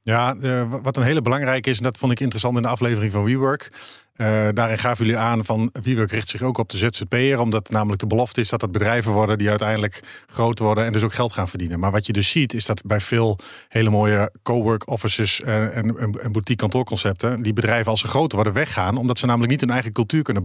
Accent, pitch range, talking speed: Dutch, 105-125 Hz, 245 wpm